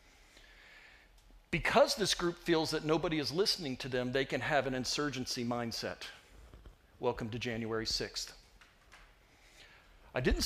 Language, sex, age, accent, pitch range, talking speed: English, male, 50-69, American, 120-165 Hz, 125 wpm